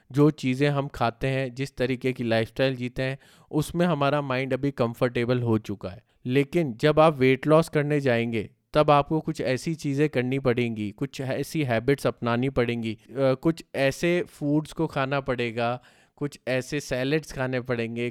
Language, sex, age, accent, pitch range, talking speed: Hindi, male, 20-39, native, 120-145 Hz, 160 wpm